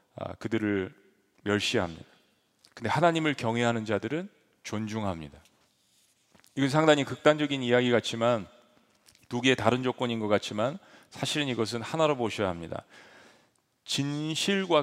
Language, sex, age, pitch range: Korean, male, 40-59, 115-150 Hz